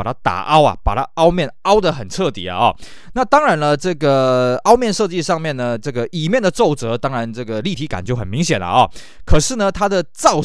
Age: 20-39